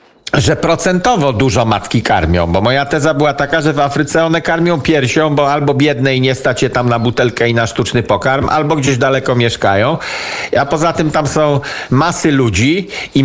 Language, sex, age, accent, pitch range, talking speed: Polish, male, 50-69, native, 125-165 Hz, 190 wpm